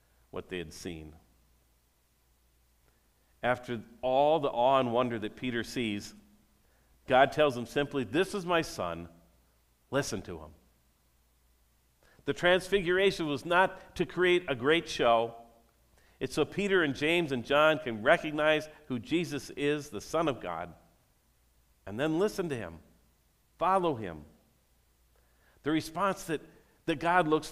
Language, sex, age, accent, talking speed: English, male, 50-69, American, 135 wpm